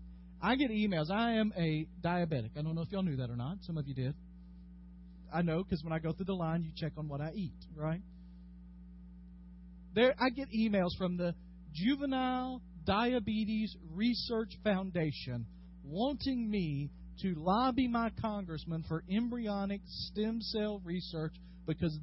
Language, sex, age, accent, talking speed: English, male, 40-59, American, 160 wpm